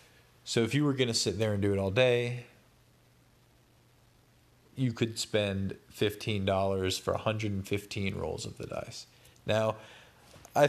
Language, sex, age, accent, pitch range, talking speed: English, male, 20-39, American, 105-125 Hz, 140 wpm